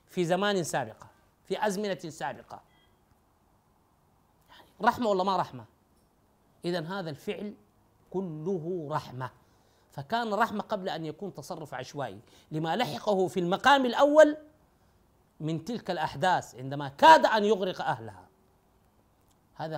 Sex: male